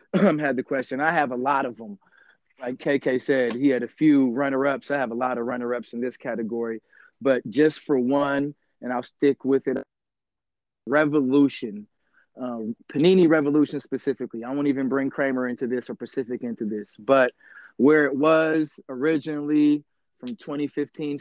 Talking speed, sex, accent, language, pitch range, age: 165 wpm, male, American, English, 130-145 Hz, 30-49